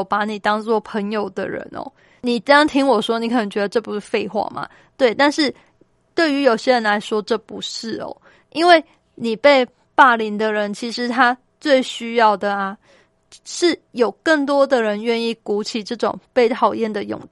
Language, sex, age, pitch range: Chinese, female, 20-39, 210-265 Hz